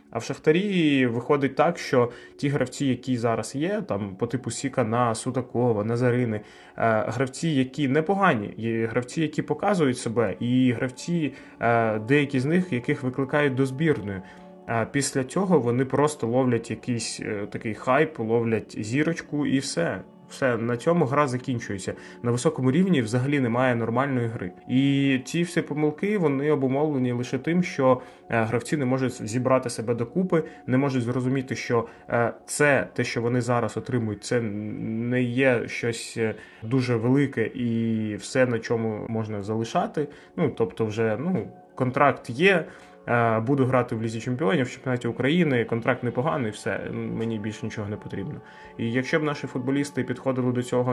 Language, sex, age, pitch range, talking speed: Ukrainian, male, 20-39, 115-140 Hz, 145 wpm